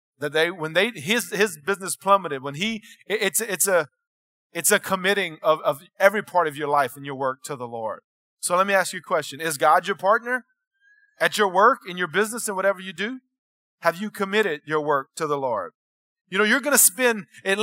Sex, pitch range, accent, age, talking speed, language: male, 170-215 Hz, American, 30-49, 220 wpm, English